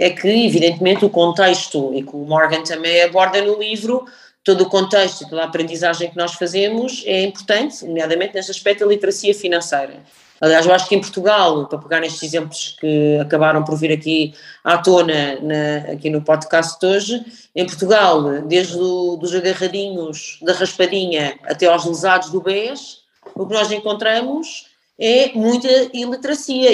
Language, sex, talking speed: Portuguese, female, 160 wpm